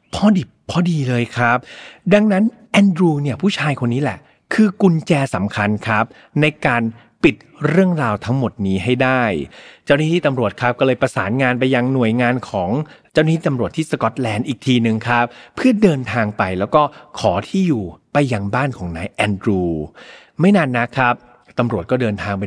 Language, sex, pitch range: Thai, male, 115-170 Hz